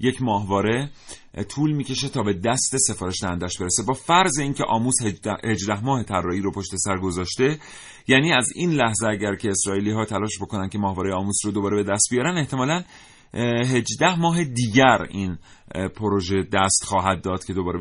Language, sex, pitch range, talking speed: Persian, male, 100-130 Hz, 175 wpm